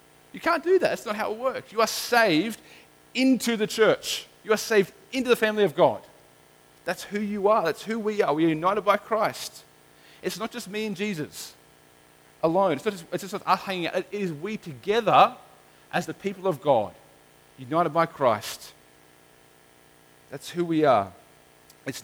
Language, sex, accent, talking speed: English, male, Australian, 185 wpm